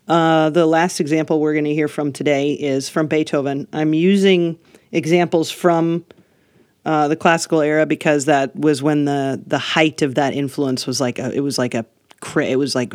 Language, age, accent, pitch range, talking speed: English, 40-59, American, 135-165 Hz, 190 wpm